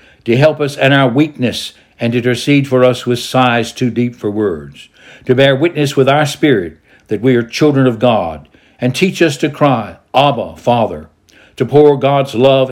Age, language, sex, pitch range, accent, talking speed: 60-79, English, male, 115-140 Hz, American, 190 wpm